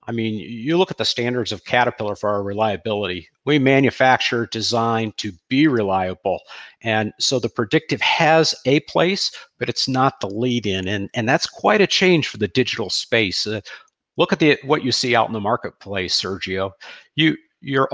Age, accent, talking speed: 50-69, American, 185 wpm